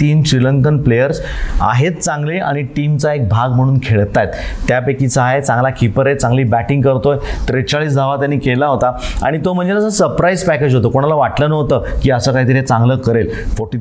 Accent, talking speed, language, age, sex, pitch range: native, 170 wpm, Marathi, 30-49, male, 125-150 Hz